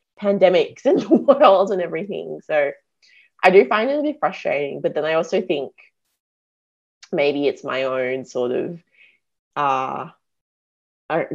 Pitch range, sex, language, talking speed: 135-210 Hz, female, English, 135 wpm